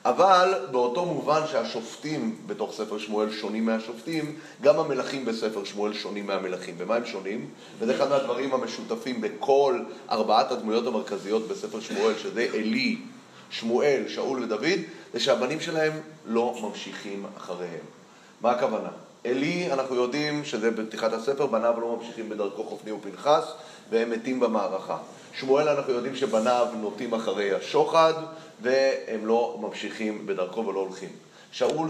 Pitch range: 110-155 Hz